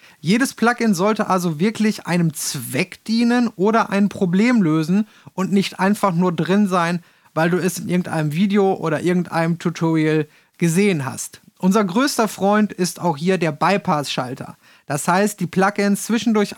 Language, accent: German, German